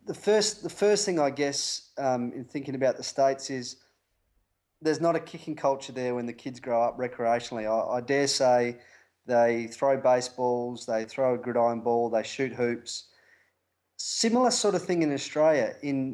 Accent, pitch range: Australian, 115-140 Hz